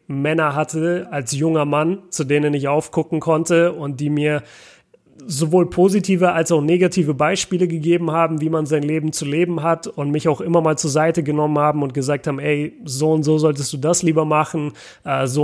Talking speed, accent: 195 wpm, German